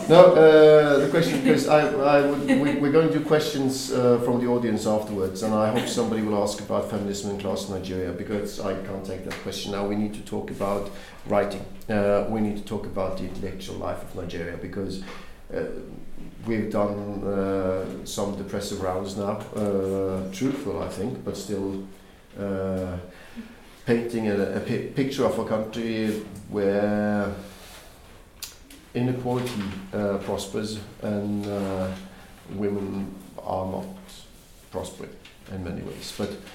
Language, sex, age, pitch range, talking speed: English, male, 50-69, 95-110 Hz, 150 wpm